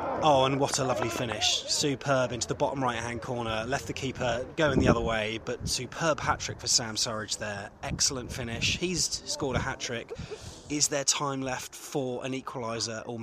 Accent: British